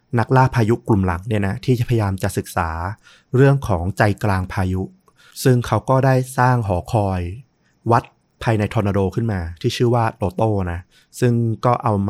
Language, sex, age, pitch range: Thai, male, 20-39, 95-125 Hz